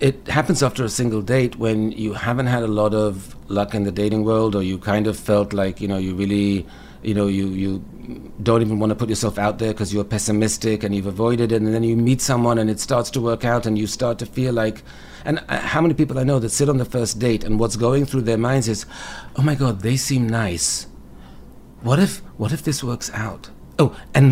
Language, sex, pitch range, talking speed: English, male, 110-155 Hz, 240 wpm